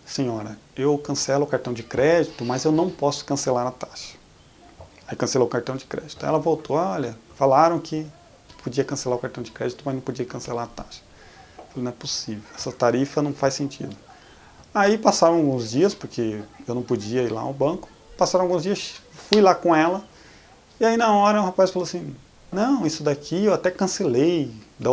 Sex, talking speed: male, 195 wpm